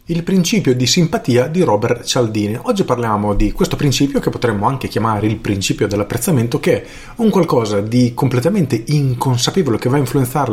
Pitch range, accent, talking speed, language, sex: 115-155 Hz, native, 170 wpm, Italian, male